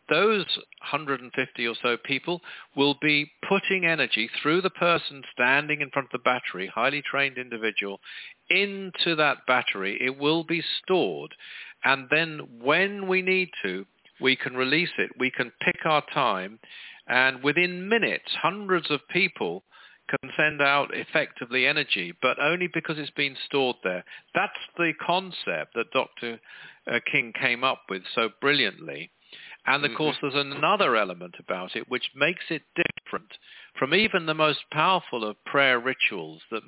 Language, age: English, 50-69